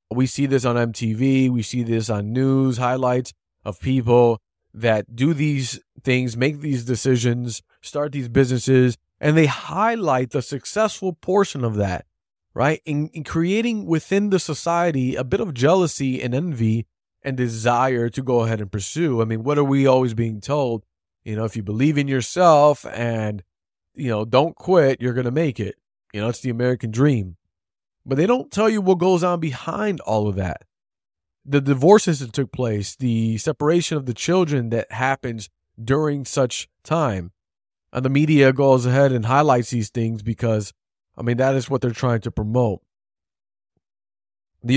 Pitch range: 115-145 Hz